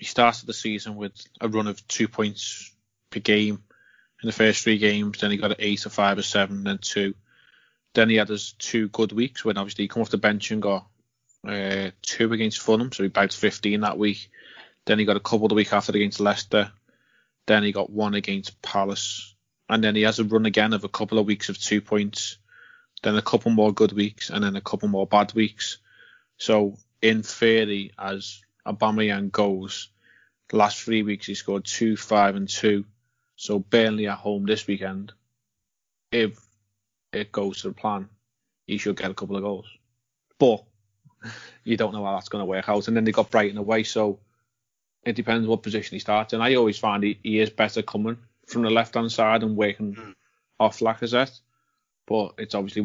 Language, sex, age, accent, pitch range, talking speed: English, male, 20-39, British, 100-110 Hz, 200 wpm